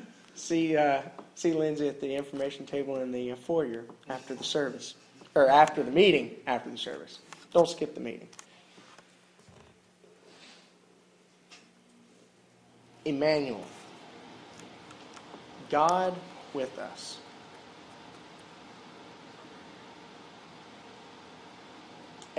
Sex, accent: male, American